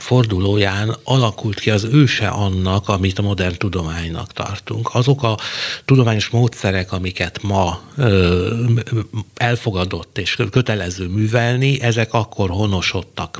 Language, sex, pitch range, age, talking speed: Hungarian, male, 95-125 Hz, 60-79, 105 wpm